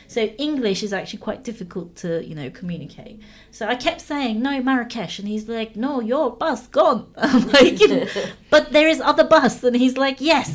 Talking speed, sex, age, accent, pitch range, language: 180 wpm, female, 30-49, British, 185-255 Hz, English